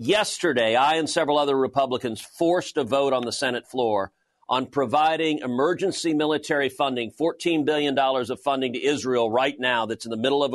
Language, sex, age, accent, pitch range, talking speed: English, male, 40-59, American, 140-170 Hz, 175 wpm